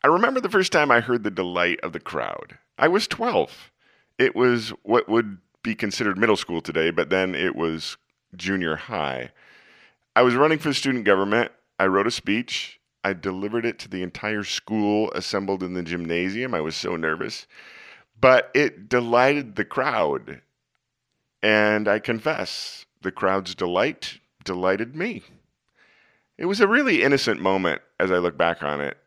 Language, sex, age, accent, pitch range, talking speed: English, male, 40-59, American, 85-115 Hz, 165 wpm